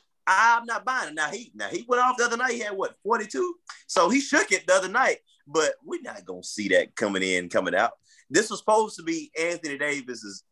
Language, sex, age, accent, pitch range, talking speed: English, male, 30-49, American, 150-255 Hz, 235 wpm